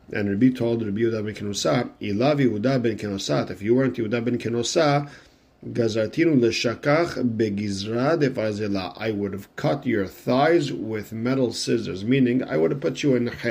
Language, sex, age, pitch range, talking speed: English, male, 40-59, 100-125 Hz, 140 wpm